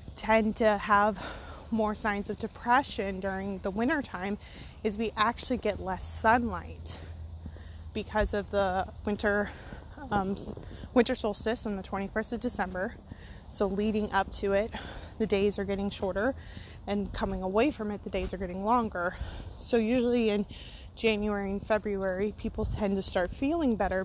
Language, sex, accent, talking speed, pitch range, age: English, female, American, 150 wpm, 190-225 Hz, 20-39